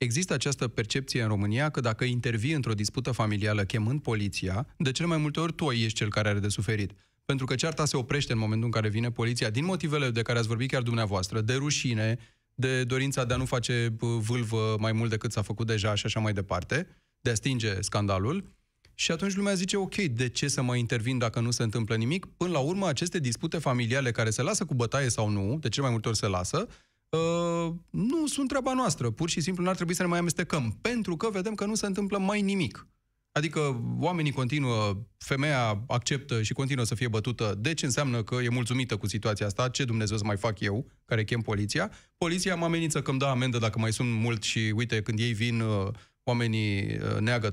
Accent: native